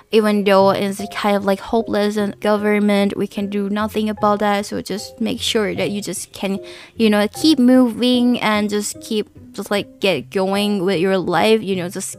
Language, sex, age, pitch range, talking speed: English, female, 10-29, 200-265 Hz, 195 wpm